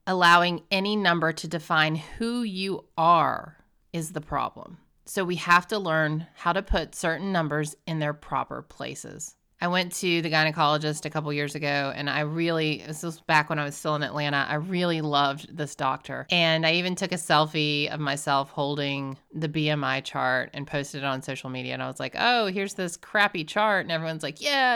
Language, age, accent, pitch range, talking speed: English, 30-49, American, 145-175 Hz, 200 wpm